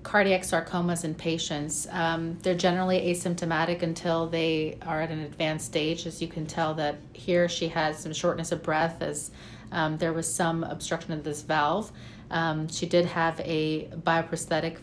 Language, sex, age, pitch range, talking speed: English, female, 30-49, 160-175 Hz, 170 wpm